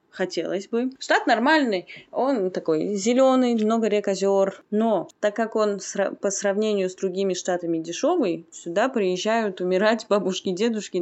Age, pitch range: 20-39, 175-215 Hz